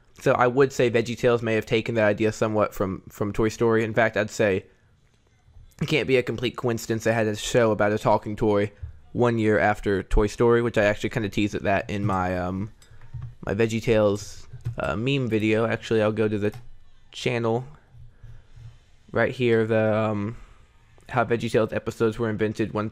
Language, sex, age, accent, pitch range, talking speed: English, male, 20-39, American, 105-120 Hz, 185 wpm